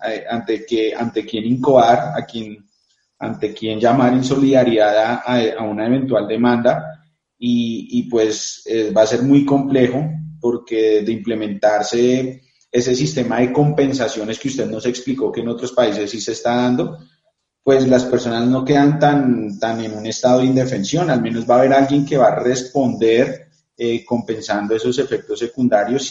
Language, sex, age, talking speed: Spanish, male, 30-49, 165 wpm